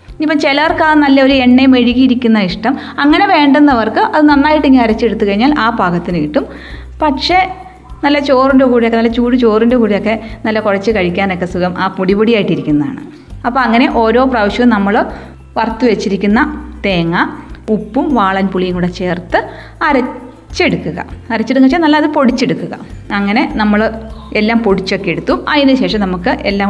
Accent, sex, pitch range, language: native, female, 195-270 Hz, Malayalam